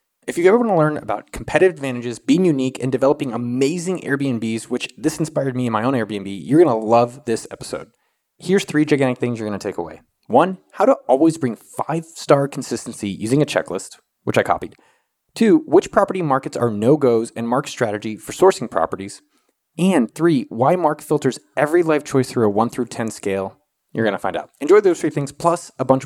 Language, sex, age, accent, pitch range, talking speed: English, male, 20-39, American, 120-160 Hz, 205 wpm